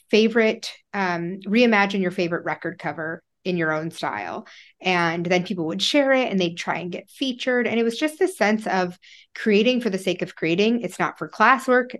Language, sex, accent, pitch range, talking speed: English, female, American, 165-200 Hz, 200 wpm